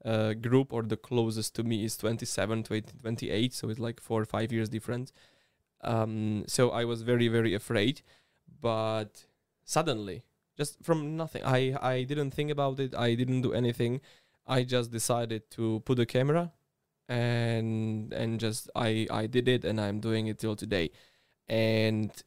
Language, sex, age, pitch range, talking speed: Slovak, male, 20-39, 110-125 Hz, 165 wpm